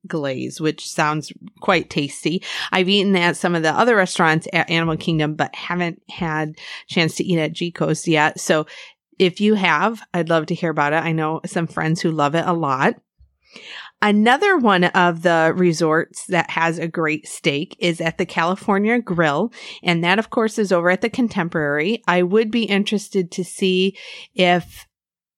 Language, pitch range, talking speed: English, 160-195 Hz, 180 wpm